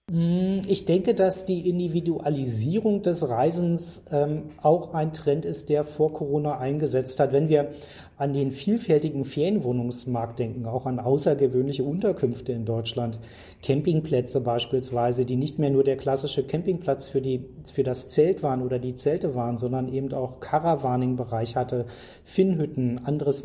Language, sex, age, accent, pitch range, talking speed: German, male, 40-59, German, 130-155 Hz, 140 wpm